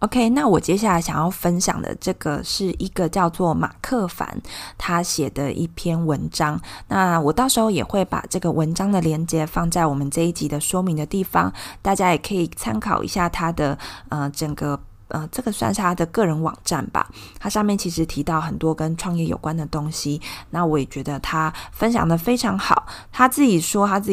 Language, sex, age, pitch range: Chinese, female, 20-39, 155-195 Hz